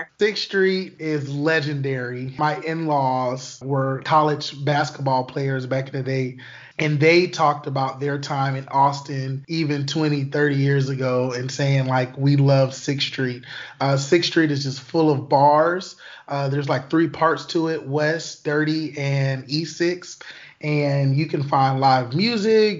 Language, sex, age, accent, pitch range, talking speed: English, male, 20-39, American, 140-160 Hz, 160 wpm